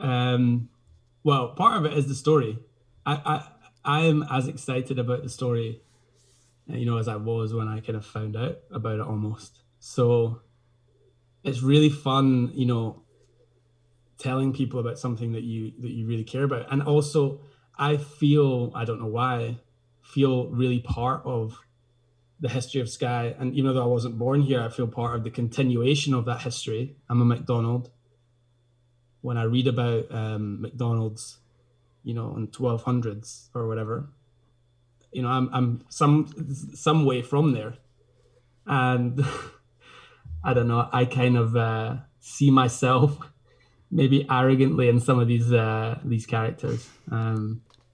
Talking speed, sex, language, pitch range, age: 155 wpm, male, English, 115-130 Hz, 20-39